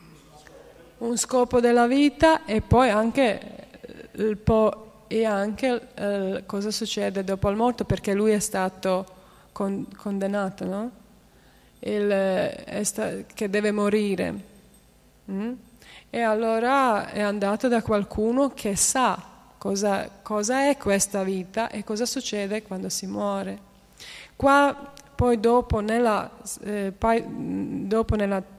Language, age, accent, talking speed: Italian, 20-39, native, 120 wpm